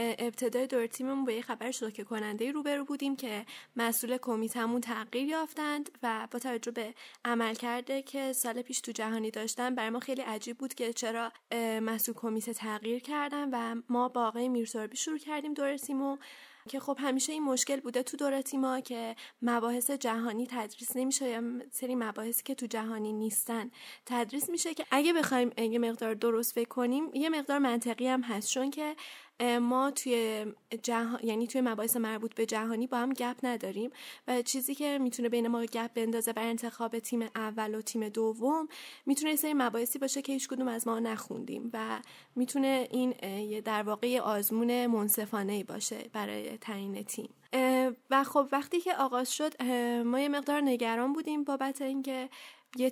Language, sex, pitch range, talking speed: Persian, female, 230-270 Hz, 165 wpm